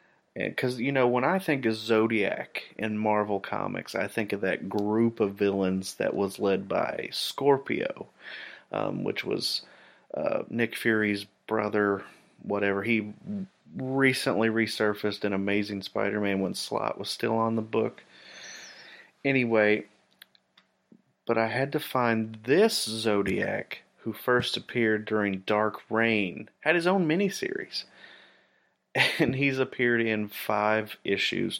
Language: English